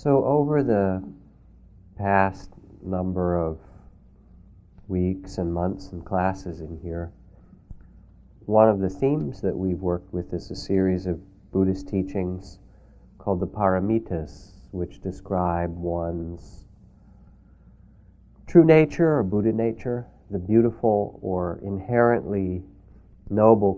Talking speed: 110 wpm